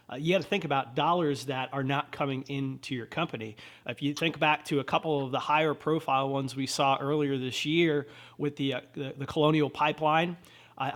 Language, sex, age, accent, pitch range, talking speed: English, male, 30-49, American, 140-165 Hz, 215 wpm